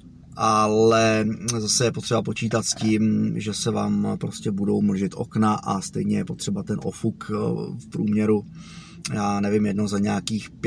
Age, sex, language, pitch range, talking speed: 30-49, male, Czech, 105-135 Hz, 150 wpm